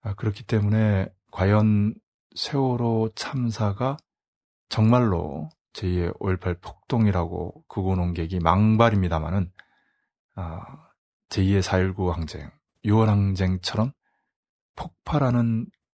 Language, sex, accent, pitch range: Korean, male, native, 95-115 Hz